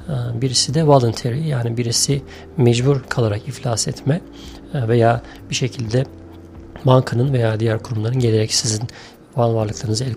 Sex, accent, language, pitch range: male, native, Turkish, 115-140 Hz